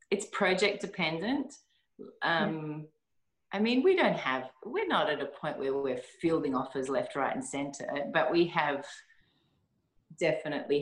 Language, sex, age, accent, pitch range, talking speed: English, female, 30-49, Australian, 135-185 Hz, 140 wpm